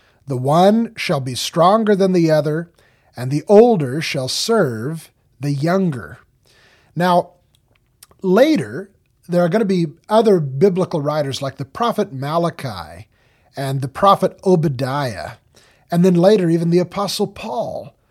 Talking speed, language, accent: 135 wpm, English, American